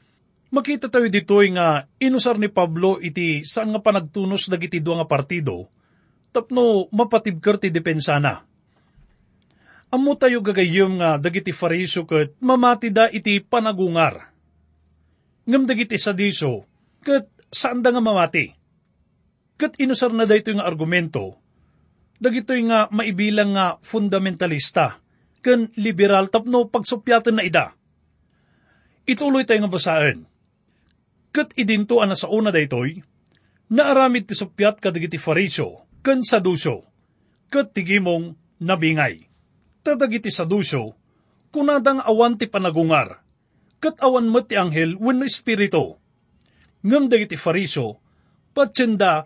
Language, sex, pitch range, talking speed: English, male, 165-240 Hz, 115 wpm